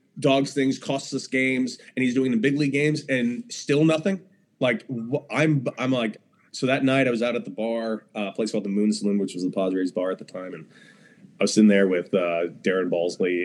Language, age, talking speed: English, 20-39, 230 wpm